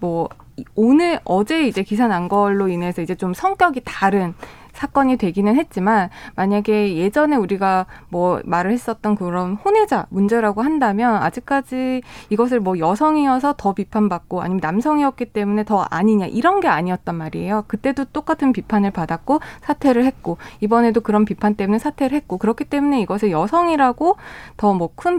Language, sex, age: Korean, female, 20-39